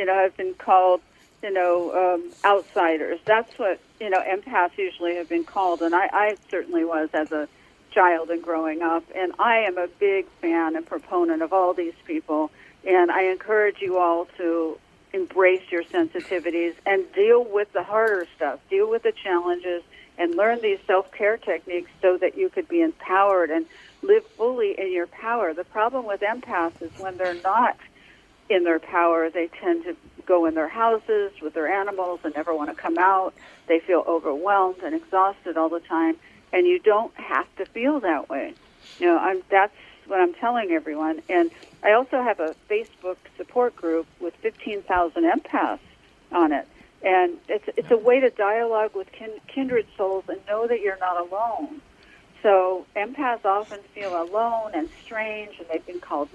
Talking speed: 180 wpm